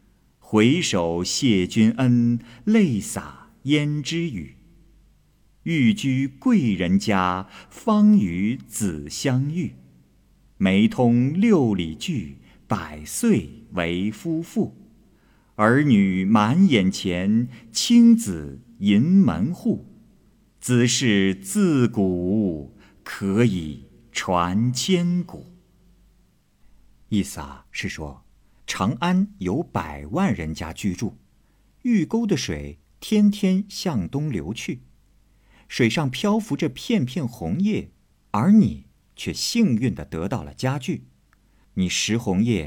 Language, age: Chinese, 50-69